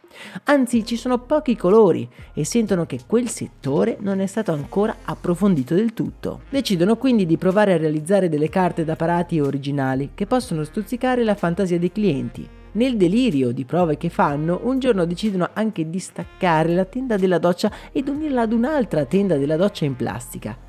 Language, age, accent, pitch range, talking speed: Italian, 30-49, native, 160-205 Hz, 175 wpm